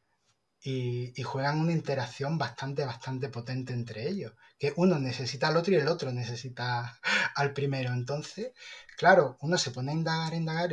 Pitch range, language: 125-155 Hz, Spanish